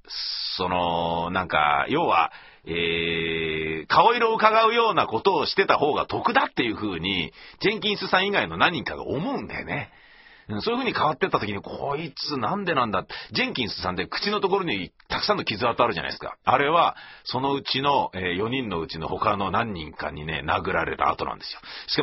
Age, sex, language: 40-59, male, Japanese